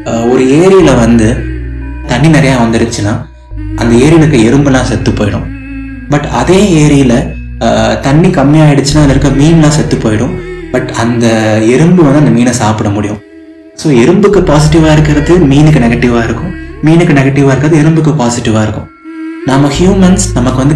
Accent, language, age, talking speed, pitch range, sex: native, Tamil, 20-39, 100 wpm, 110-150 Hz, male